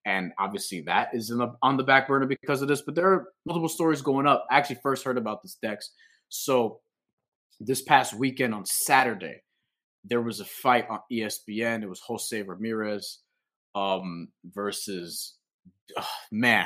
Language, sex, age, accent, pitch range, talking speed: English, male, 20-39, American, 95-130 Hz, 160 wpm